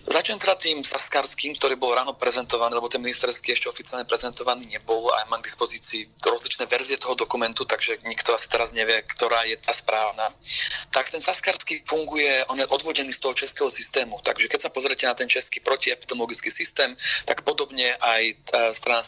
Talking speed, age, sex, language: 175 wpm, 30-49, male, Slovak